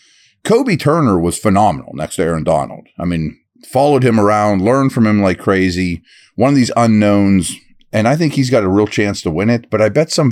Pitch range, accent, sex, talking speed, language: 90-120 Hz, American, male, 215 wpm, English